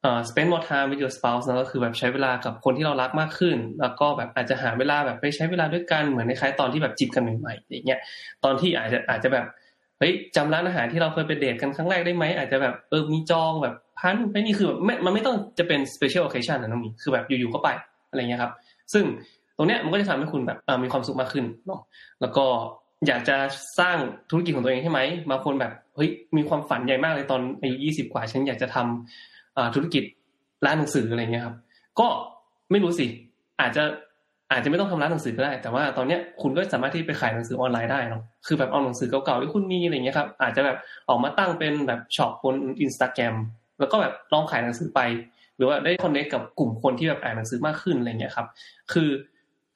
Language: Thai